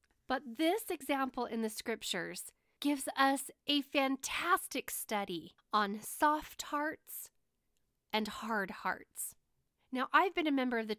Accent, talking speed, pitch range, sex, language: American, 130 wpm, 210-285 Hz, female, English